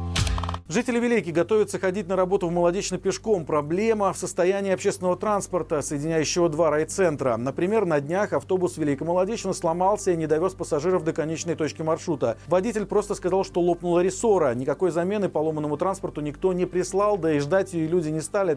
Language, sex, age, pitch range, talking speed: Russian, male, 40-59, 145-190 Hz, 170 wpm